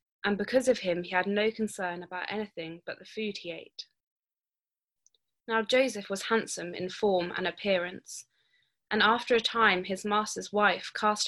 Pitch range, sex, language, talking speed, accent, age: 185-220 Hz, female, English, 165 wpm, British, 20-39